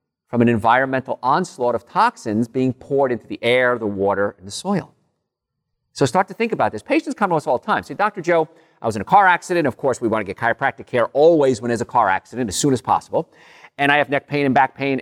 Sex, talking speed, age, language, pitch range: male, 255 wpm, 50-69, English, 120-165 Hz